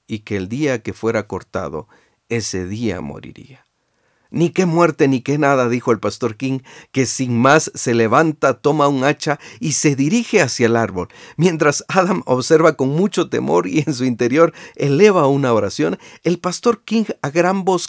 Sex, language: male, Spanish